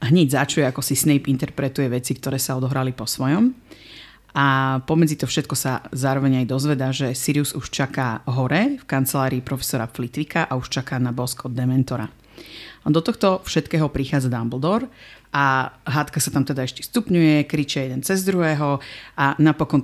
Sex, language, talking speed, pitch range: female, Slovak, 165 wpm, 130-150 Hz